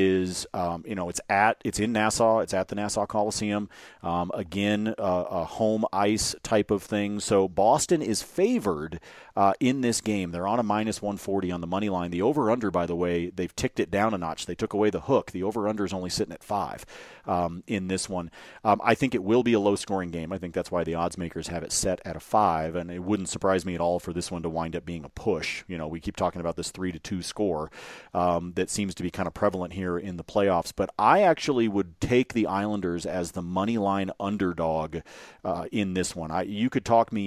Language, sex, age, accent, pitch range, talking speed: English, male, 40-59, American, 90-105 Hz, 240 wpm